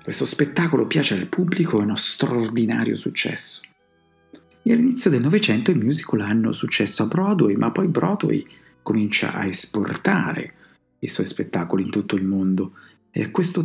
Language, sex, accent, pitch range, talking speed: Italian, male, native, 105-160 Hz, 155 wpm